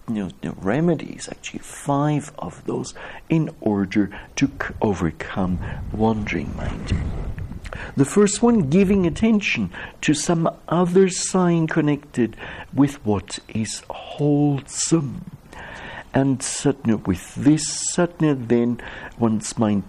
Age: 60-79